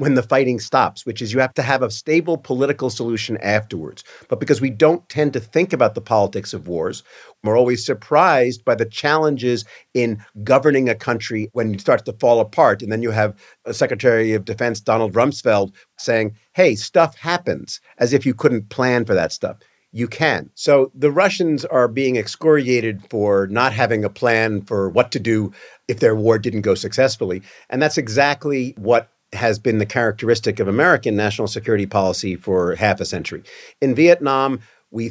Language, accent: English, American